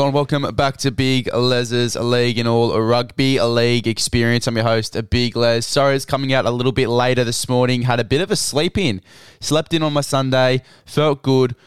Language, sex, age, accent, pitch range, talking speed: English, male, 20-39, Australian, 115-140 Hz, 210 wpm